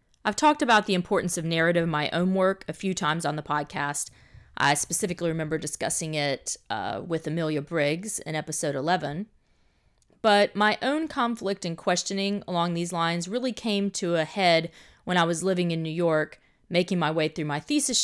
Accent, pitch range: American, 160-195 Hz